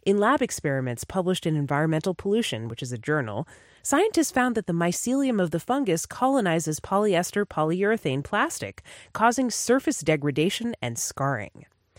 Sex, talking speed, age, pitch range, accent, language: female, 140 wpm, 30-49, 135-220 Hz, American, English